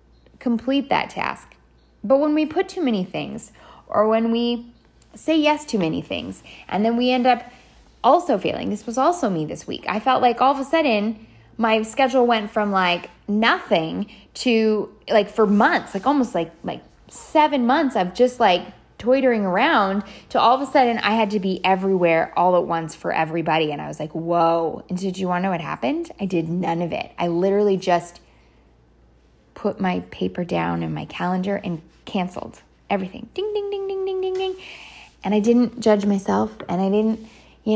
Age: 10-29